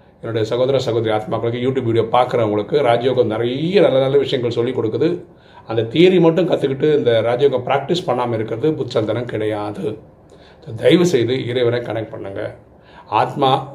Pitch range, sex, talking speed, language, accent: 110-150 Hz, male, 135 wpm, Tamil, native